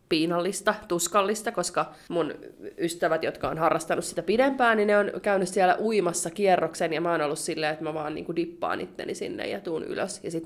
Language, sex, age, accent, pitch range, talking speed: Finnish, female, 20-39, native, 160-215 Hz, 200 wpm